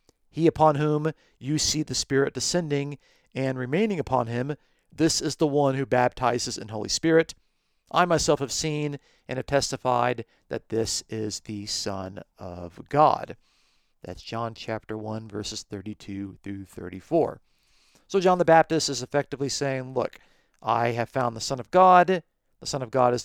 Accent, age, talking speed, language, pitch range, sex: American, 40-59, 165 wpm, English, 110-145 Hz, male